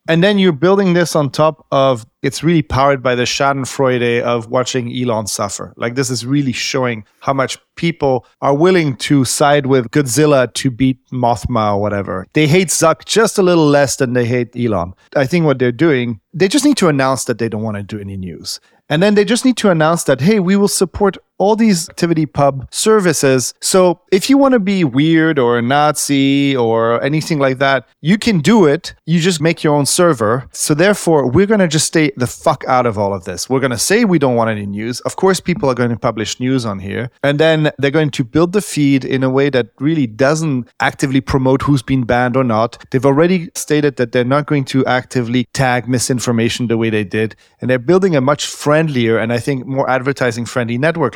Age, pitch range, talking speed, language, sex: 30-49, 125-165 Hz, 220 wpm, English, male